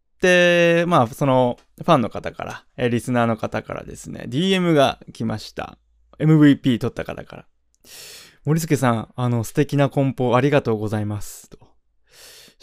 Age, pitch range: 20-39, 120-170 Hz